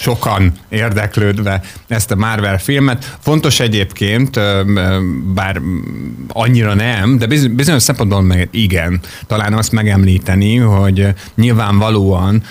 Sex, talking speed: male, 100 wpm